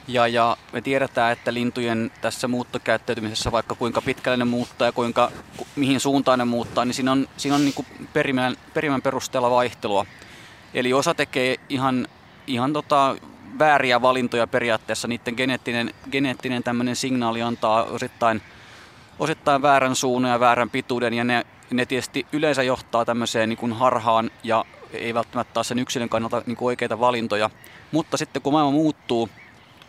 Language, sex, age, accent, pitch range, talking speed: Finnish, male, 20-39, native, 115-135 Hz, 155 wpm